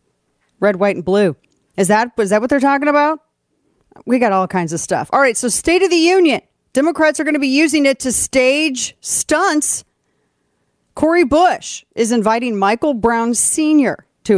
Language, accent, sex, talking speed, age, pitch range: English, American, female, 180 wpm, 40-59, 185-245 Hz